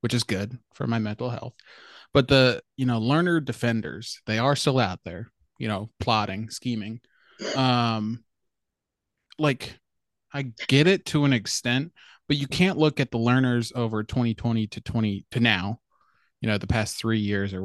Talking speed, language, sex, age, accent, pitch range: 170 wpm, English, male, 20-39, American, 110-130 Hz